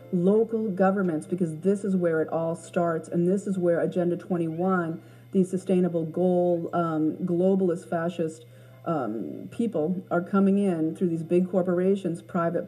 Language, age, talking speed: English, 40-59, 145 wpm